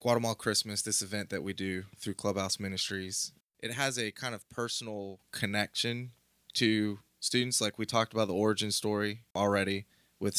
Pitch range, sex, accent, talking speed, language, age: 100-115 Hz, male, American, 160 wpm, English, 20-39